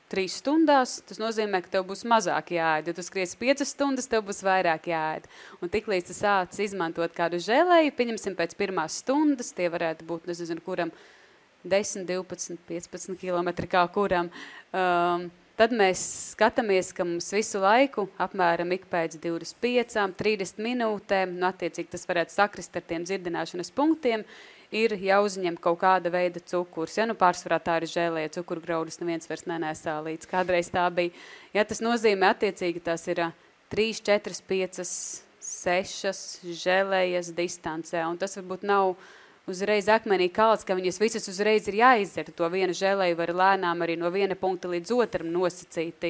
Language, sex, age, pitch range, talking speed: English, female, 30-49, 170-205 Hz, 155 wpm